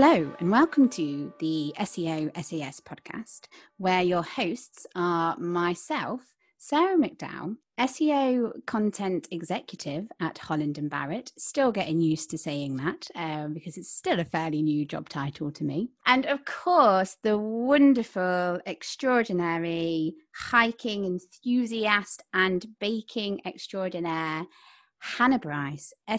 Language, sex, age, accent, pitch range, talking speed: English, female, 30-49, British, 160-235 Hz, 120 wpm